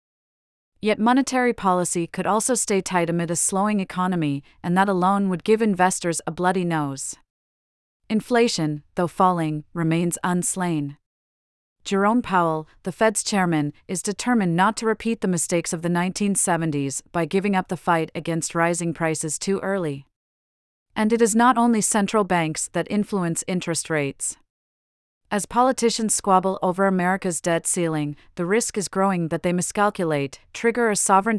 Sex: female